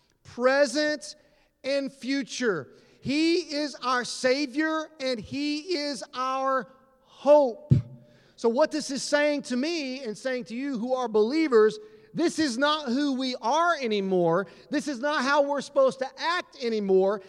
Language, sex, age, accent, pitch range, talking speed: English, male, 40-59, American, 215-280 Hz, 145 wpm